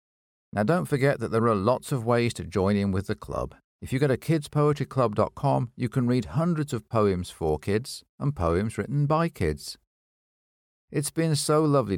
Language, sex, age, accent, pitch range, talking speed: English, male, 50-69, British, 85-135 Hz, 185 wpm